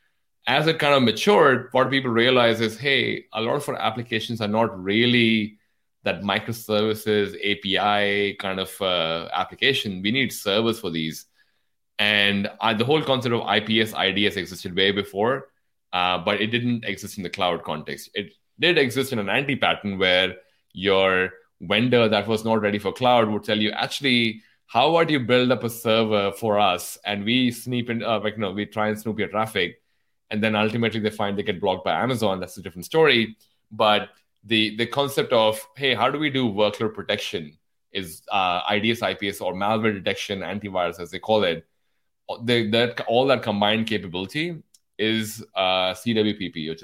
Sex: male